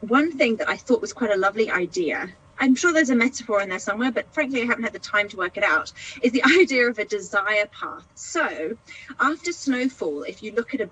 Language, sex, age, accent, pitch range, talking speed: English, female, 30-49, British, 200-250 Hz, 240 wpm